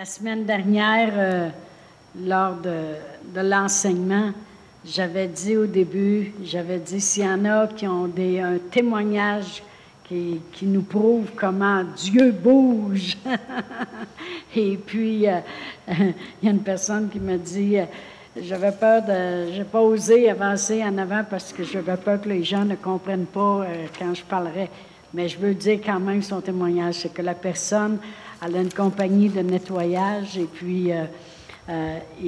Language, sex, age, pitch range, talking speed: French, female, 60-79, 180-205 Hz, 160 wpm